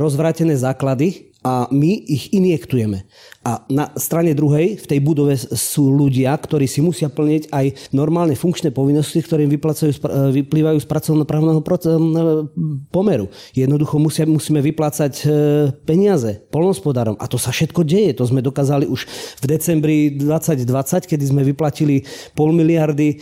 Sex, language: male, Slovak